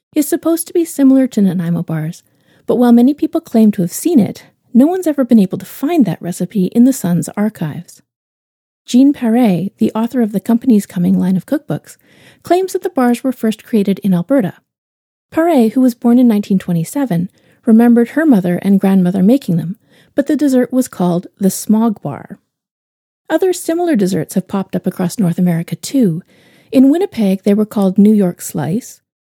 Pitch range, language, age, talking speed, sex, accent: 185-260 Hz, English, 40-59, 185 wpm, female, American